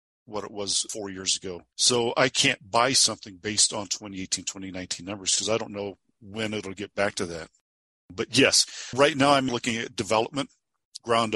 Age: 50-69